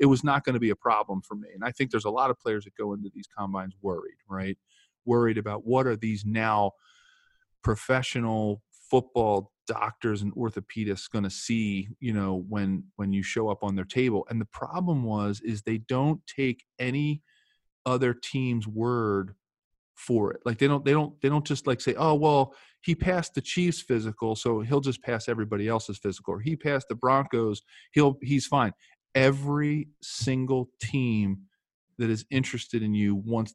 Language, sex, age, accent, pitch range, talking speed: English, male, 40-59, American, 105-130 Hz, 185 wpm